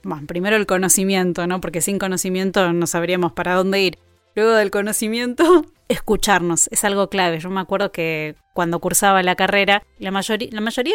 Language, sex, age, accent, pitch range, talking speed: Spanish, female, 20-39, Argentinian, 175-215 Hz, 175 wpm